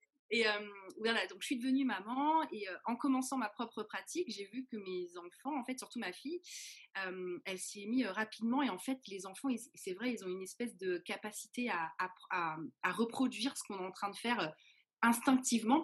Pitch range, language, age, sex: 185-245 Hz, French, 30-49, female